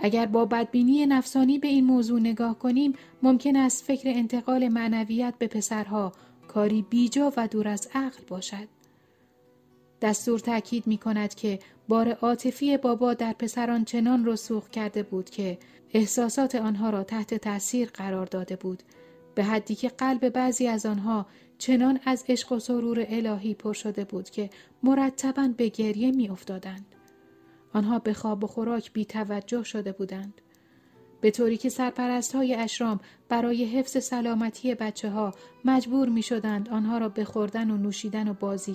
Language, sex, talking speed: Persian, female, 155 wpm